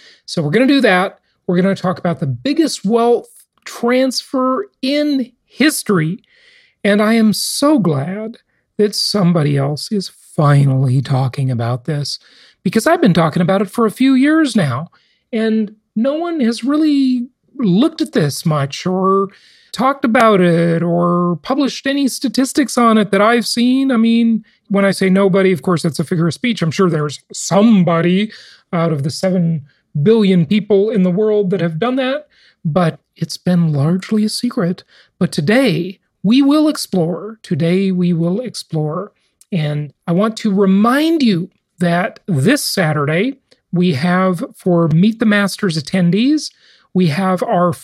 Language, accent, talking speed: English, American, 160 wpm